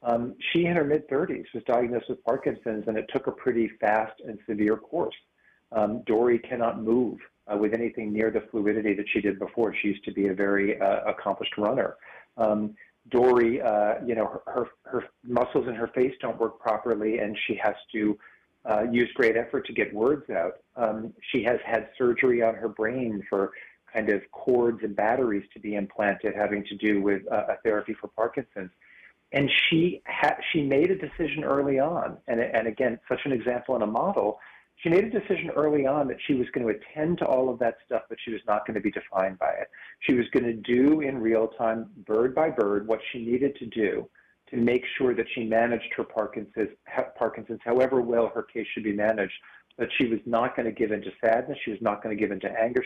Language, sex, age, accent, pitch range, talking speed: English, male, 40-59, American, 105-125 Hz, 215 wpm